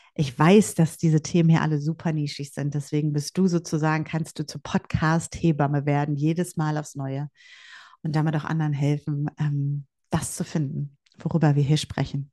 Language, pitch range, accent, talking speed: German, 150-175 Hz, German, 170 wpm